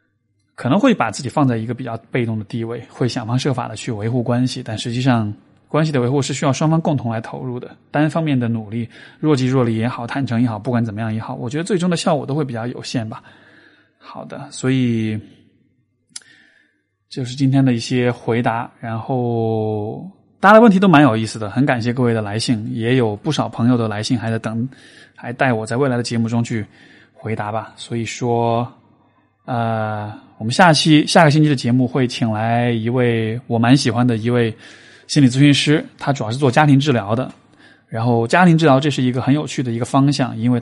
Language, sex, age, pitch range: Chinese, male, 20-39, 115-140 Hz